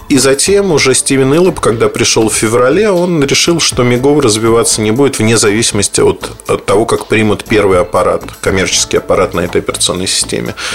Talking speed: 175 wpm